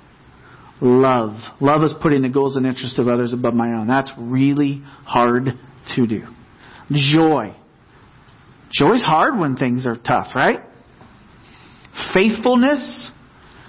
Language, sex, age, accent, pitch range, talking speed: English, male, 40-59, American, 130-185 Hz, 120 wpm